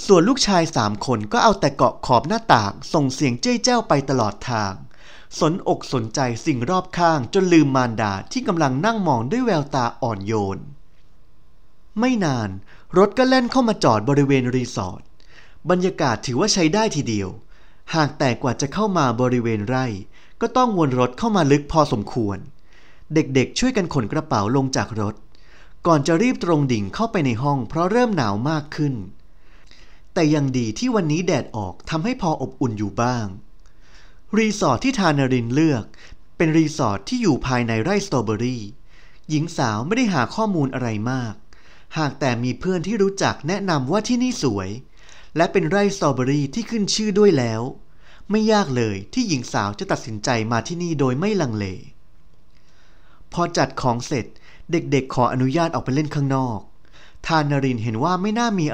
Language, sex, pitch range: Thai, male, 115-175 Hz